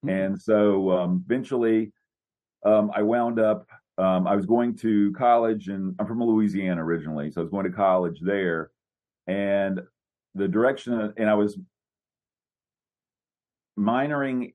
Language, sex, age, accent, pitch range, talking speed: English, male, 40-59, American, 90-105 Hz, 135 wpm